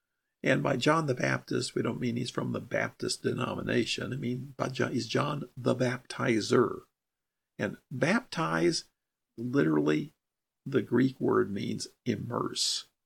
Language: English